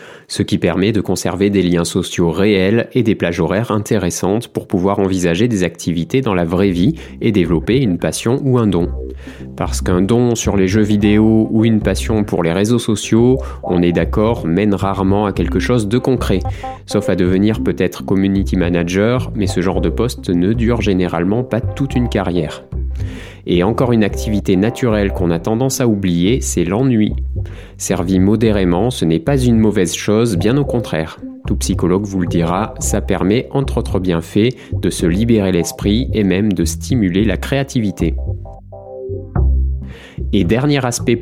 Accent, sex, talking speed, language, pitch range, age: French, male, 170 wpm, French, 90-110 Hz, 20-39